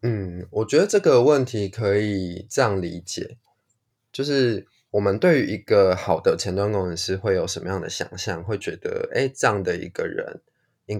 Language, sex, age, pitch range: Chinese, male, 20-39, 95-125 Hz